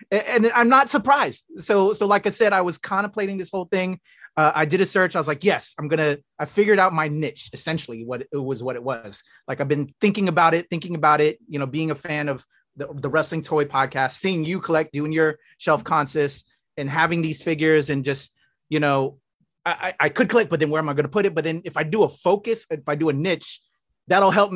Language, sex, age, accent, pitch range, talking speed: English, male, 30-49, American, 150-200 Hz, 240 wpm